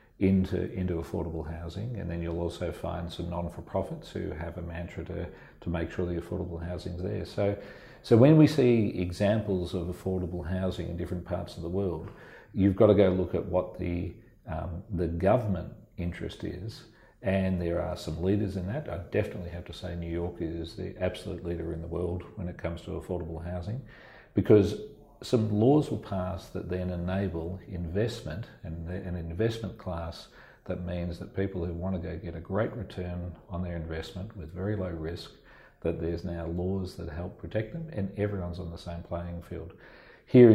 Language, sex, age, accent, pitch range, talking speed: English, male, 40-59, Australian, 85-100 Hz, 185 wpm